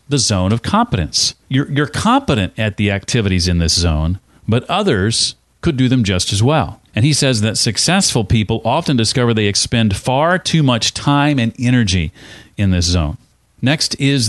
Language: English